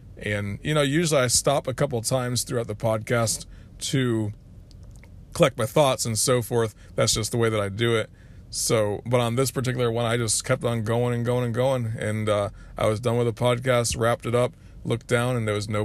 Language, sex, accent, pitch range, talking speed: English, male, American, 110-135 Hz, 225 wpm